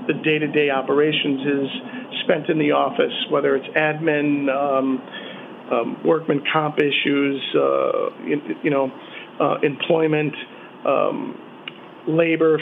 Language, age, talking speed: English, 50-69, 115 wpm